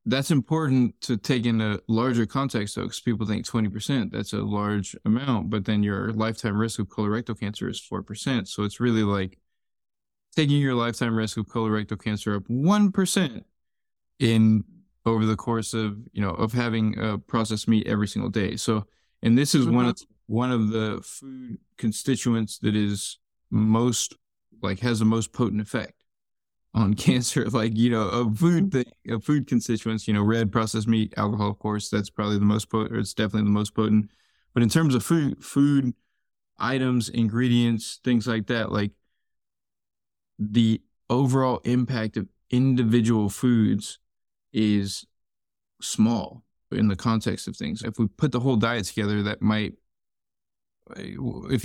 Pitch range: 105-125 Hz